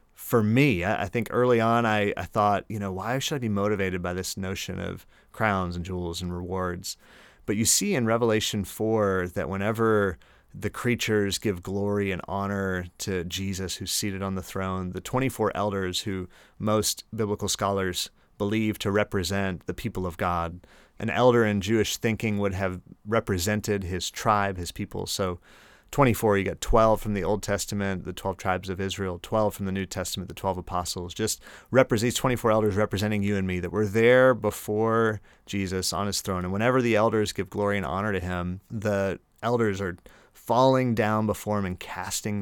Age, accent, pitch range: 30-49, American, 95-110 Hz